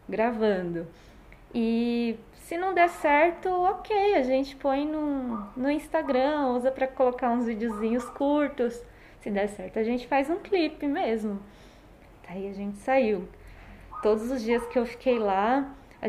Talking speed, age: 150 wpm, 20-39